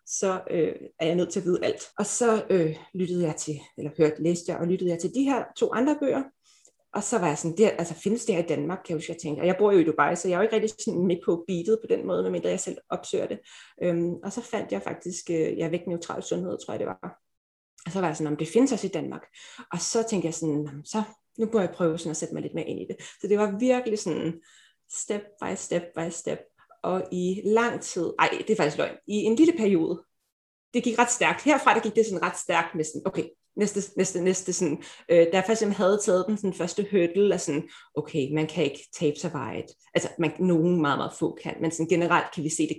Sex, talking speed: female, 260 wpm